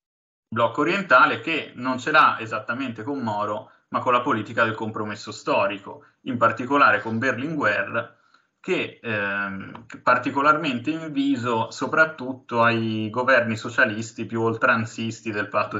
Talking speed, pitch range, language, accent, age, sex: 125 wpm, 110-120 Hz, Italian, native, 20-39, male